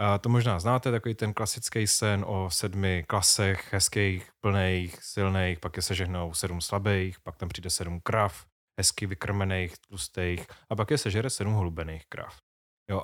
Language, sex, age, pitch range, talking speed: Czech, male, 20-39, 100-120 Hz, 160 wpm